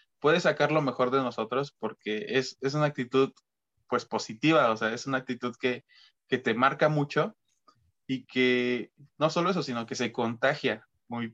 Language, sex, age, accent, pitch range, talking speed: Spanish, male, 20-39, Mexican, 115-140 Hz, 175 wpm